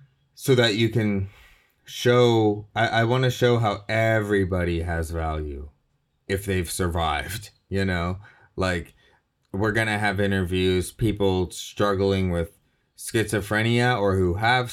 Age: 20-39